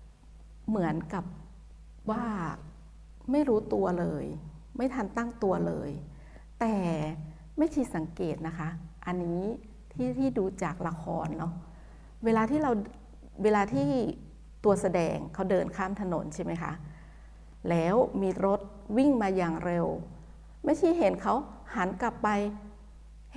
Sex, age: female, 60-79